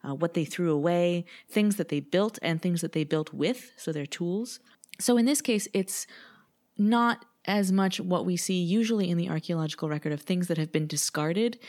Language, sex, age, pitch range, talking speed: English, female, 30-49, 145-190 Hz, 205 wpm